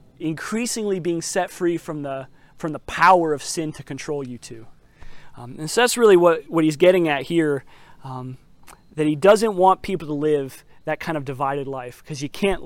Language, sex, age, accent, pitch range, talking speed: English, male, 30-49, American, 150-175 Hz, 200 wpm